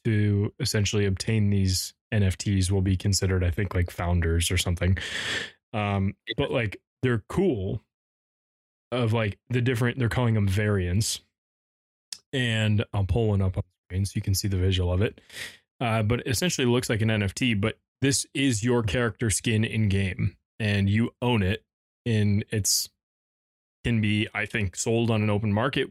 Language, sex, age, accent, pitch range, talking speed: English, male, 20-39, American, 100-120 Hz, 170 wpm